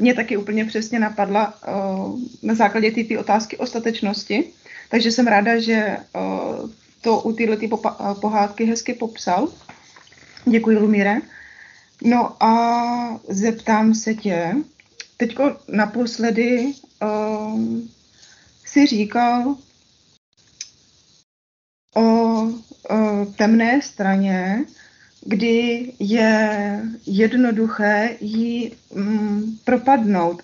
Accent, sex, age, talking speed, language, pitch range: native, female, 20-39, 95 wpm, Czech, 205-230 Hz